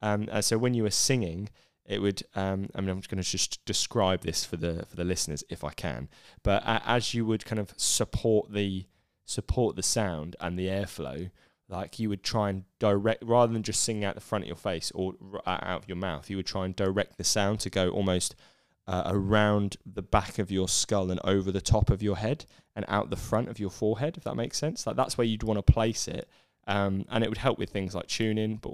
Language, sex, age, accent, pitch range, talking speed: English, male, 10-29, British, 95-110 Hz, 245 wpm